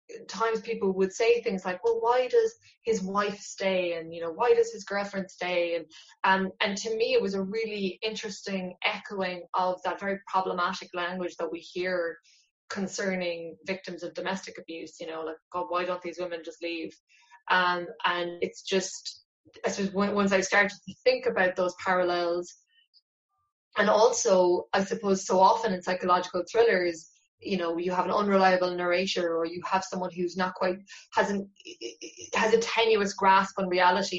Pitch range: 180-210 Hz